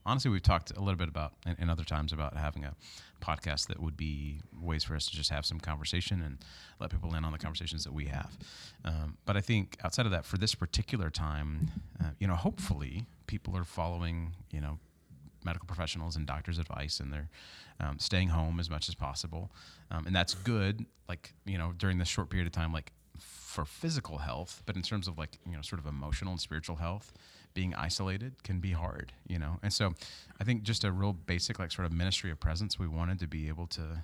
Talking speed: 225 wpm